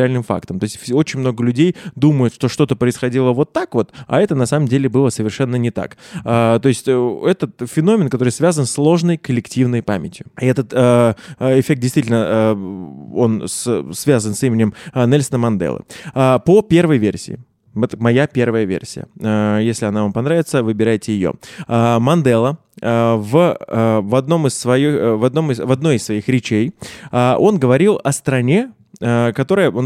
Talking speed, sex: 155 wpm, male